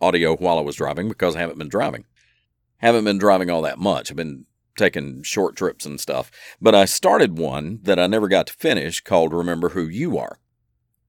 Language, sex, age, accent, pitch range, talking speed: English, male, 50-69, American, 80-105 Hz, 205 wpm